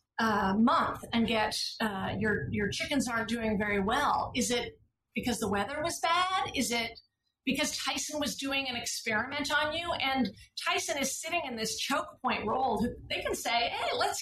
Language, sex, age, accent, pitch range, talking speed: English, female, 40-59, American, 220-290 Hz, 175 wpm